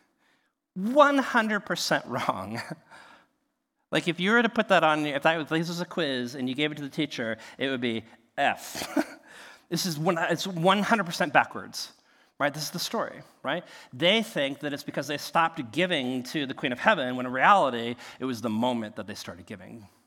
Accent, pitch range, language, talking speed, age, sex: American, 140-185 Hz, English, 180 wpm, 40-59, male